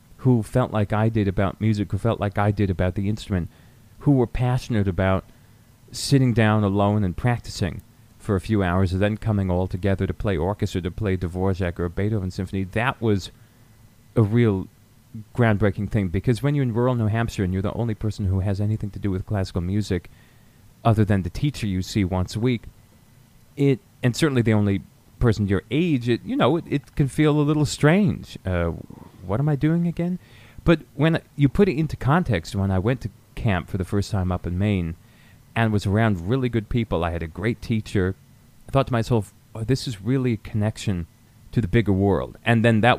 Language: English